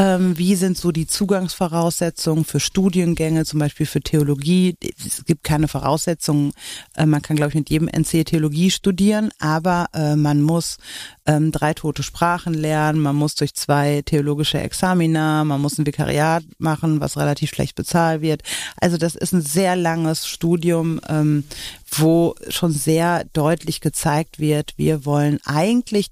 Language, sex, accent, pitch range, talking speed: German, female, German, 155-185 Hz, 145 wpm